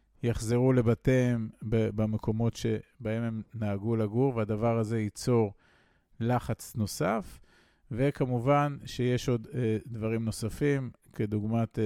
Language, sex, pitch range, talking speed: Hebrew, male, 110-125 Hz, 90 wpm